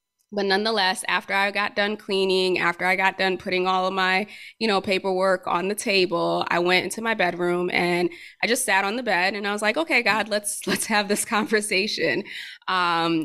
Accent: American